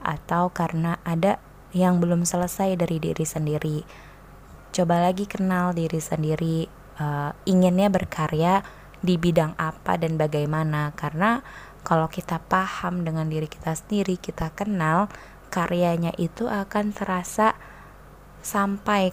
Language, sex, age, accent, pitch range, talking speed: Indonesian, female, 20-39, native, 165-195 Hz, 115 wpm